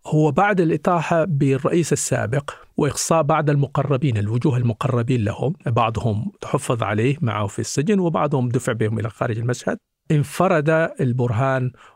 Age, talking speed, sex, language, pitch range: 50-69, 125 wpm, male, Arabic, 120-155 Hz